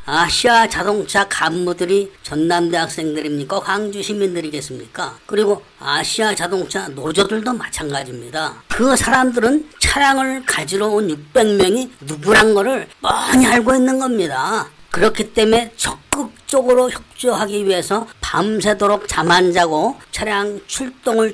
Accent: native